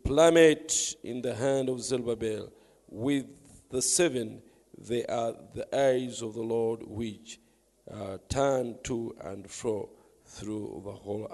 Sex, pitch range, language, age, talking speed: male, 115-150 Hz, English, 50-69, 130 wpm